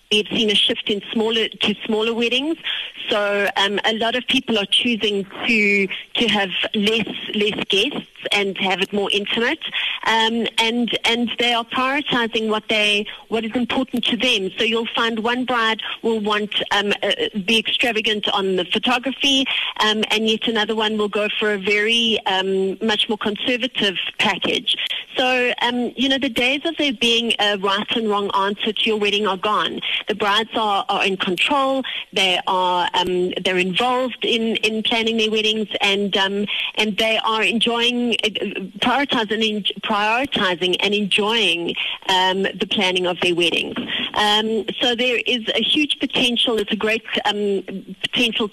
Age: 30-49